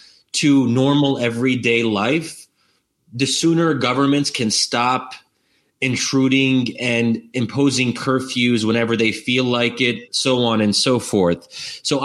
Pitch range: 110-135 Hz